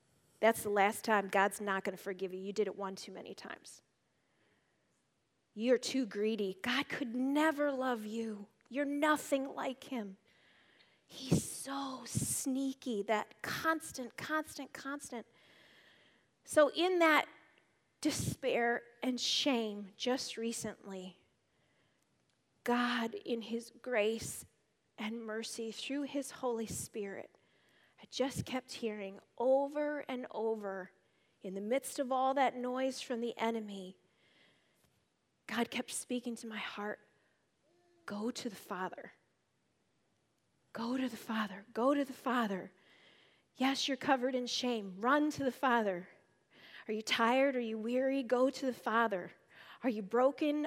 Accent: American